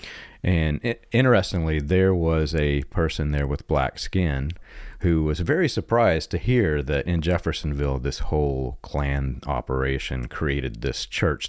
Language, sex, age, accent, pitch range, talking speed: English, male, 40-59, American, 75-95 Hz, 135 wpm